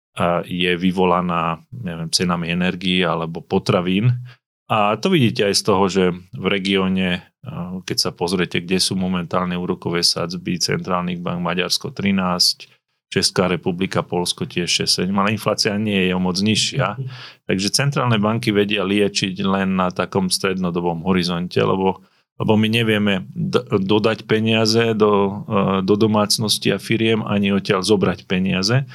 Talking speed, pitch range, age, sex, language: 135 wpm, 95-115 Hz, 30-49, male, Slovak